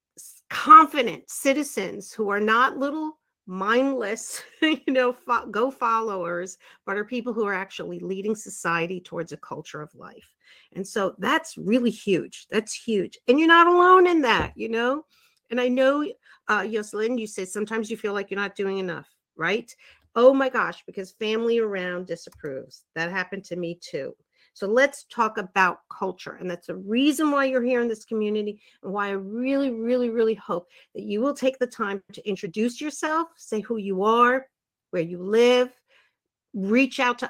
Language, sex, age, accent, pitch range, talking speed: English, female, 50-69, American, 200-270 Hz, 175 wpm